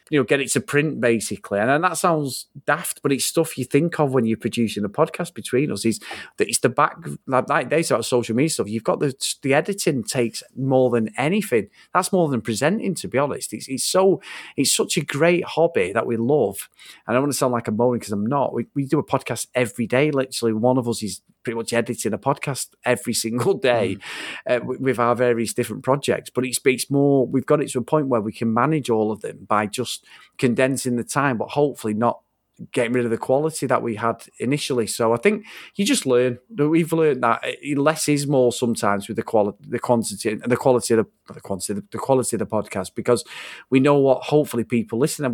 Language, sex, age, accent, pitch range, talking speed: English, male, 30-49, British, 115-145 Hz, 230 wpm